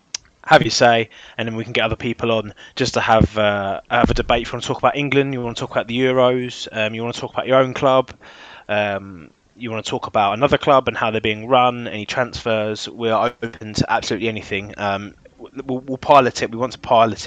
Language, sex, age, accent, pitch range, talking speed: English, male, 20-39, British, 105-125 Hz, 245 wpm